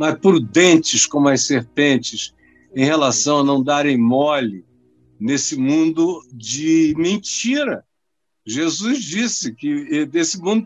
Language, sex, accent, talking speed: Portuguese, male, Brazilian, 115 wpm